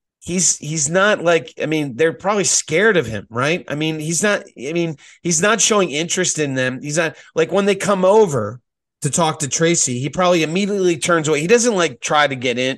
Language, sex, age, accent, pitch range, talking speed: English, male, 30-49, American, 145-200 Hz, 220 wpm